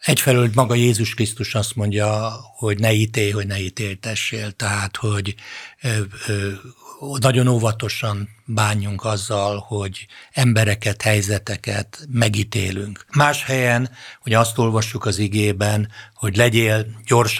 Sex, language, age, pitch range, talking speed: male, Hungarian, 60-79, 100-115 Hz, 110 wpm